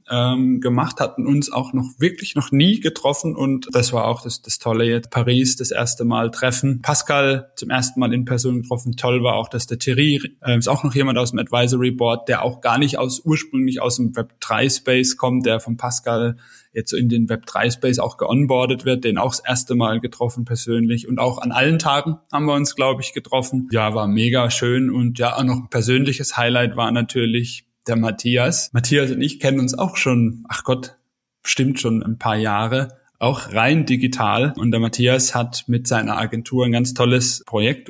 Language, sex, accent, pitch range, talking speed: German, male, German, 120-135 Hz, 200 wpm